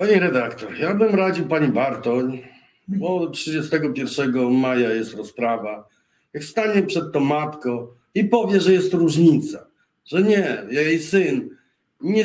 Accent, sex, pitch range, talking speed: native, male, 140-200 Hz, 130 wpm